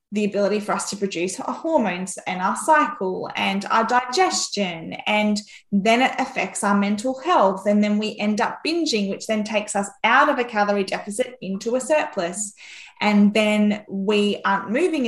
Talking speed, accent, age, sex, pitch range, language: 175 wpm, Australian, 10-29, female, 195-230 Hz, English